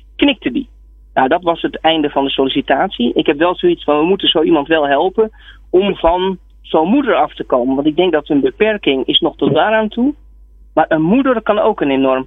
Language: Dutch